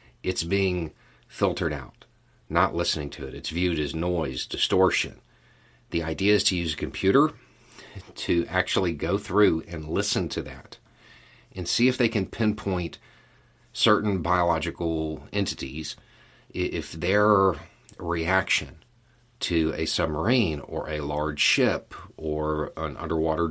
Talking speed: 130 wpm